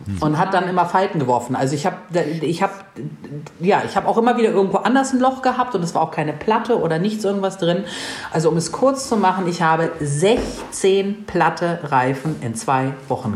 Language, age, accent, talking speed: German, 40-59, German, 200 wpm